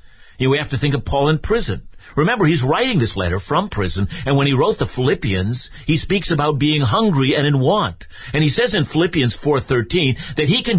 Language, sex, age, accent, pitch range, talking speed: English, male, 50-69, American, 105-160 Hz, 210 wpm